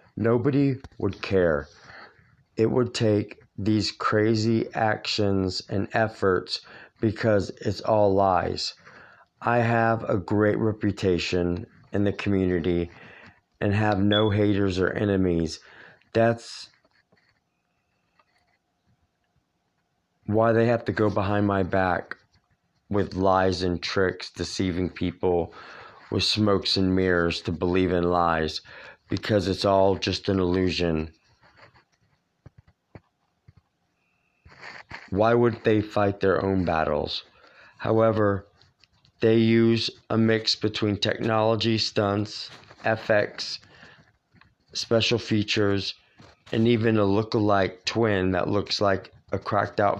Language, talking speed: English, 105 wpm